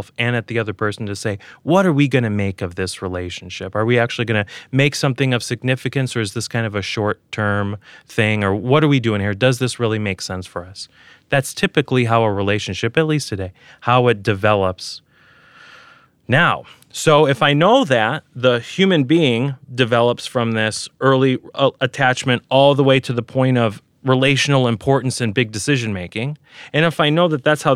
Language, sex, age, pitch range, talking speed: English, male, 30-49, 110-140 Hz, 200 wpm